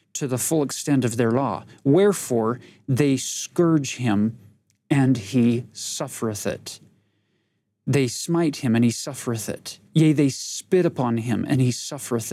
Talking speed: 145 wpm